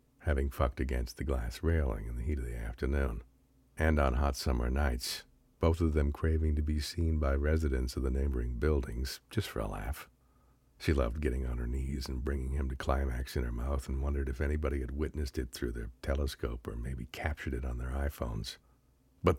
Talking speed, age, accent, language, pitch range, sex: 205 wpm, 60-79, American, English, 65-80 Hz, male